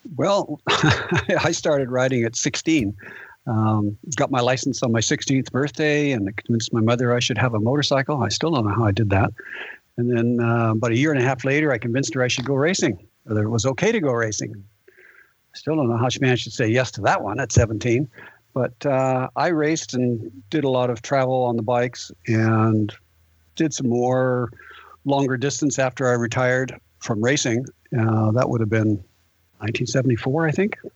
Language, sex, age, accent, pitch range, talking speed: English, male, 60-79, American, 115-140 Hz, 200 wpm